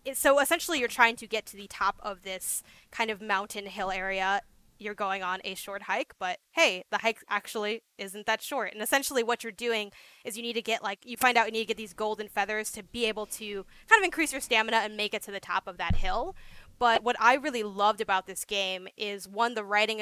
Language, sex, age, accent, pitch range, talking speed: English, female, 10-29, American, 200-240 Hz, 245 wpm